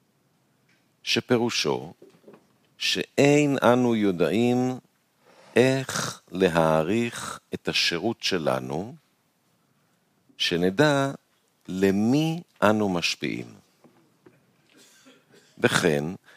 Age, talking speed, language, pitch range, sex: 50-69, 50 wpm, Hebrew, 95-135 Hz, male